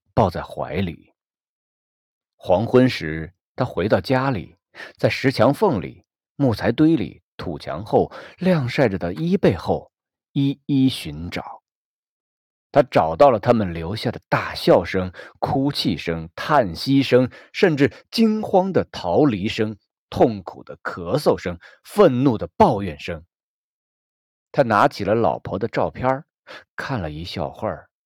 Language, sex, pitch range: Chinese, male, 85-140 Hz